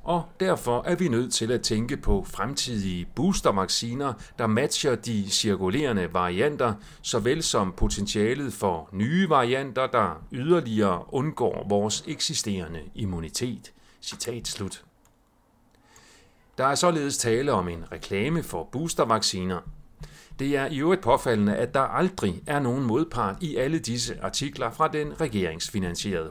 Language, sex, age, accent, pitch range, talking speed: Danish, male, 40-59, native, 100-140 Hz, 130 wpm